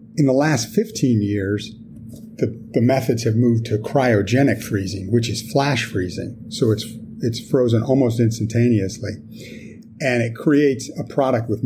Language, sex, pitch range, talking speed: English, male, 110-125 Hz, 150 wpm